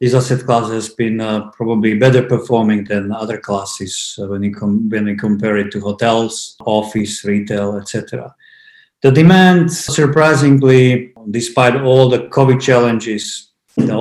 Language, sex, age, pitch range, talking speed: English, male, 50-69, 110-135 Hz, 135 wpm